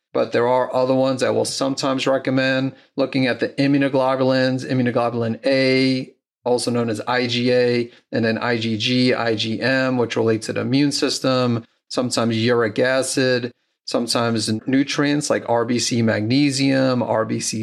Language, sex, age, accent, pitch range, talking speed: English, male, 30-49, American, 120-130 Hz, 130 wpm